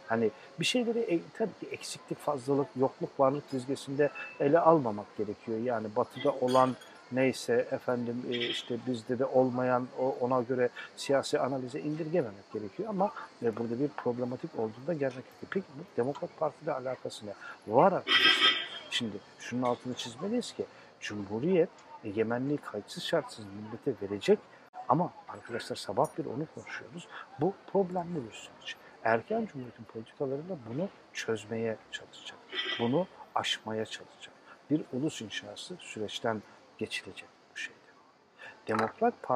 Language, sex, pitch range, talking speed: Turkish, male, 110-145 Hz, 125 wpm